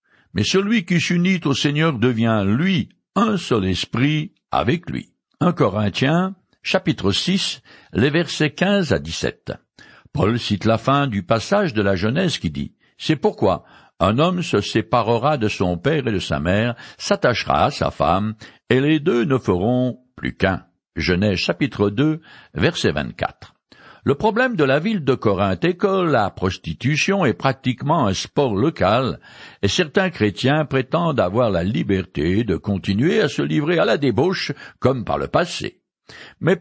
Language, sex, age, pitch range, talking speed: French, male, 60-79, 105-160 Hz, 165 wpm